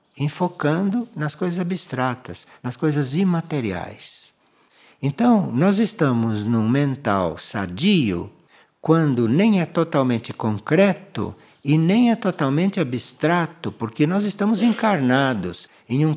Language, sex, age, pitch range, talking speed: Portuguese, male, 60-79, 120-185 Hz, 110 wpm